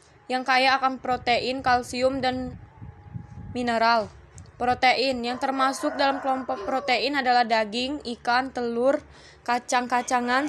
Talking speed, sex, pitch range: 105 wpm, female, 240-265 Hz